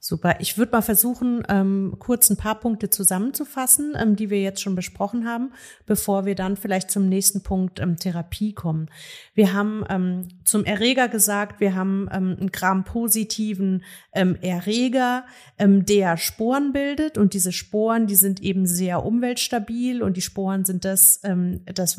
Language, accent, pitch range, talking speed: German, German, 185-220 Hz, 165 wpm